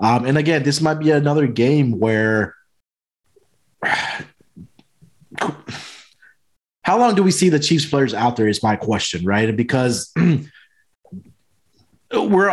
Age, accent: 20-39, American